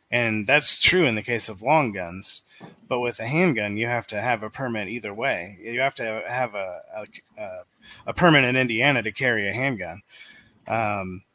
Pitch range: 110-140 Hz